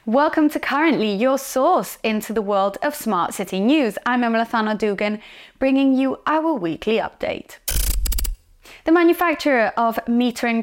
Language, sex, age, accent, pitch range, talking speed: English, female, 30-49, British, 190-265 Hz, 135 wpm